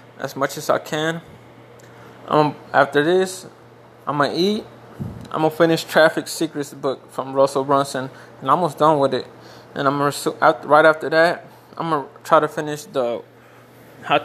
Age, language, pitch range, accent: 20-39, English, 135-155 Hz, American